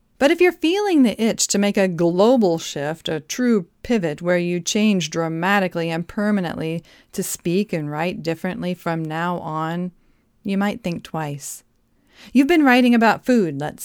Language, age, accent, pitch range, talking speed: English, 40-59, American, 170-220 Hz, 165 wpm